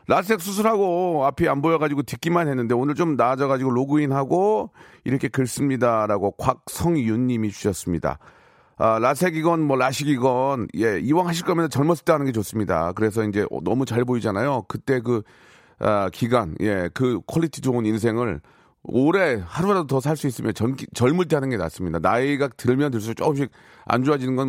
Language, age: Korean, 40-59